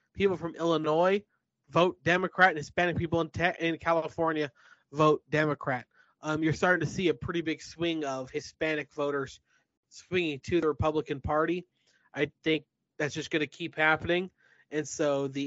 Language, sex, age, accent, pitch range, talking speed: English, male, 30-49, American, 145-170 Hz, 160 wpm